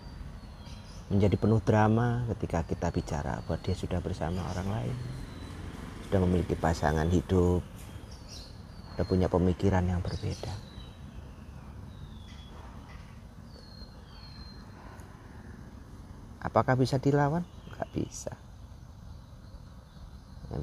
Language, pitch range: Indonesian, 85-105 Hz